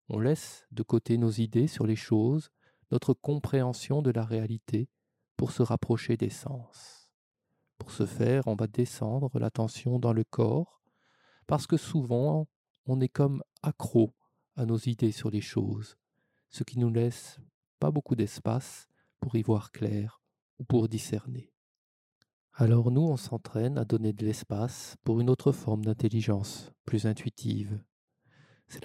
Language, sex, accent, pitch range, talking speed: French, male, French, 110-145 Hz, 150 wpm